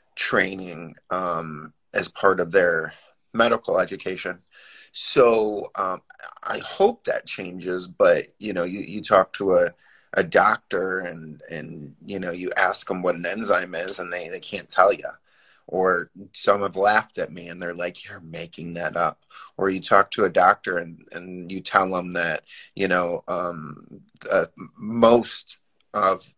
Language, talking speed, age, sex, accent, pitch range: English, 165 wpm, 30-49, male, American, 90-115 Hz